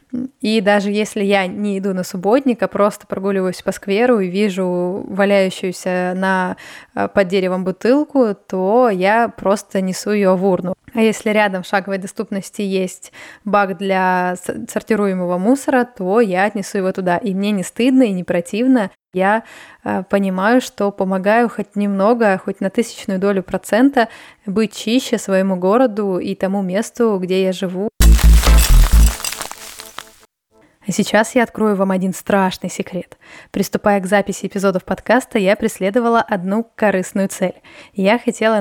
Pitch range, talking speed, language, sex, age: 190-220 Hz, 140 wpm, Russian, female, 20-39